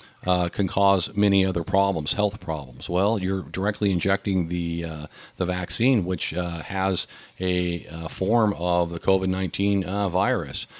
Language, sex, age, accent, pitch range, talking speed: English, male, 50-69, American, 85-105 Hz, 150 wpm